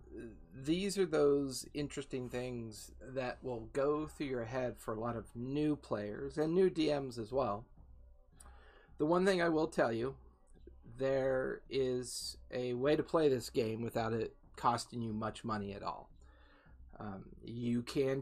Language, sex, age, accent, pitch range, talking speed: English, male, 40-59, American, 105-140 Hz, 160 wpm